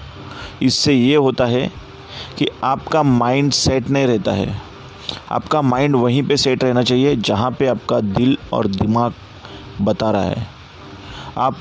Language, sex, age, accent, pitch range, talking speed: Hindi, male, 30-49, native, 115-140 Hz, 145 wpm